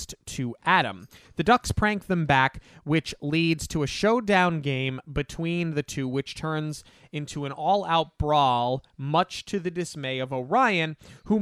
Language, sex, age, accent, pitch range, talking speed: English, male, 30-49, American, 140-180 Hz, 150 wpm